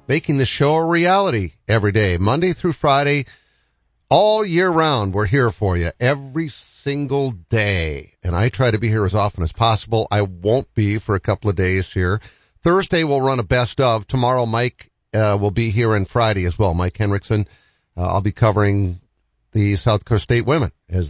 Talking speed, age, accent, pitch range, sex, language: 190 wpm, 50-69, American, 100-130 Hz, male, English